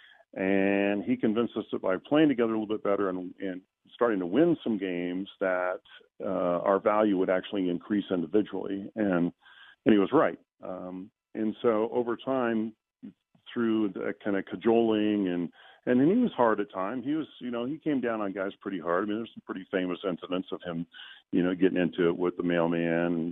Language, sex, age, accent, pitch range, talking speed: English, male, 40-59, American, 90-110 Hz, 200 wpm